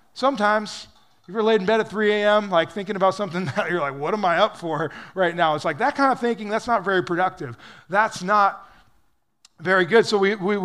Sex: male